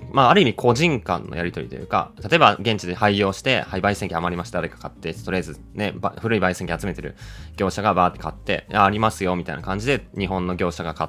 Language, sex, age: Japanese, male, 20-39